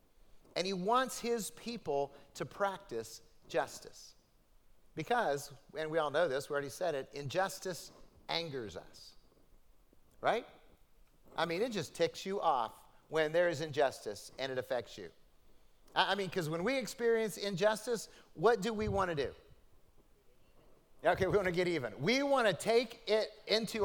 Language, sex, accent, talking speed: English, male, American, 155 wpm